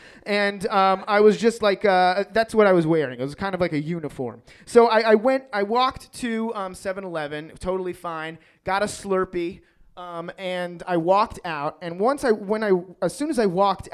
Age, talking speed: 30-49, 205 wpm